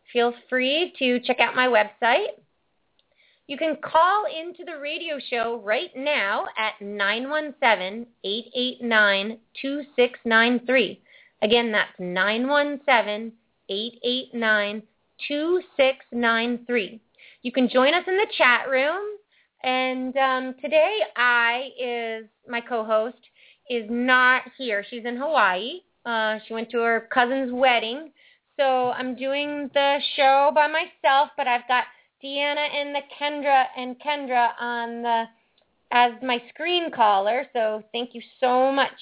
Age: 30-49